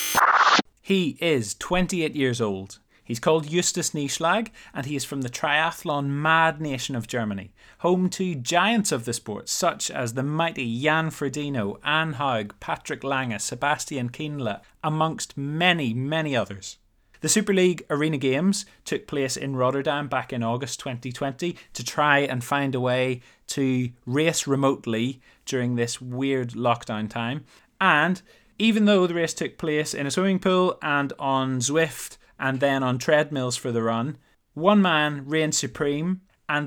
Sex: male